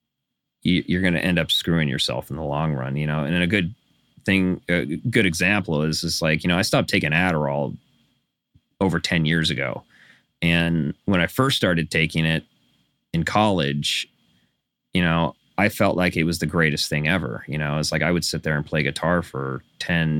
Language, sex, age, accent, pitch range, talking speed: English, male, 30-49, American, 80-95 Hz, 200 wpm